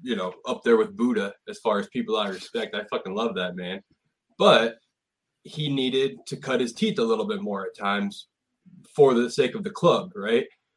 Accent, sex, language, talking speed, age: American, male, English, 205 wpm, 20-39